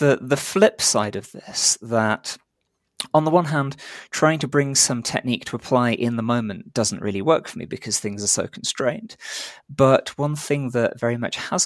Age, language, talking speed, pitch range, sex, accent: 20-39, English, 190 wpm, 110-135 Hz, male, British